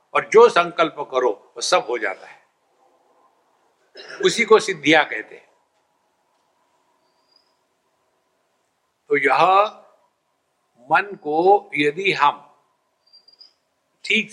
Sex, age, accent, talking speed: male, 60-79, Indian, 90 wpm